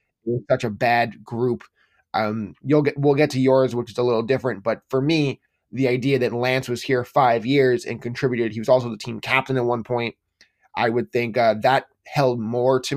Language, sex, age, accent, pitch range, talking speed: English, male, 20-39, American, 115-140 Hz, 215 wpm